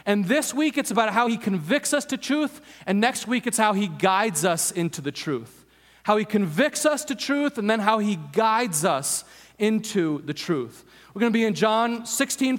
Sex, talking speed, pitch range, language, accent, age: male, 210 wpm, 175-220 Hz, English, American, 30-49